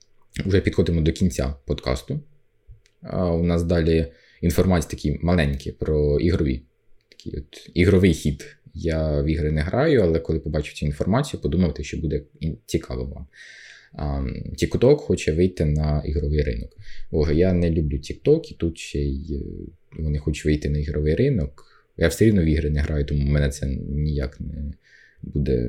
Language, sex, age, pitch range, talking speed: Ukrainian, male, 20-39, 75-100 Hz, 160 wpm